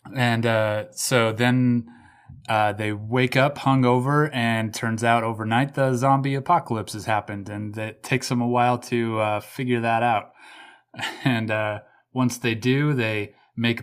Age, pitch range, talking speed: 20-39, 110-125 Hz, 155 wpm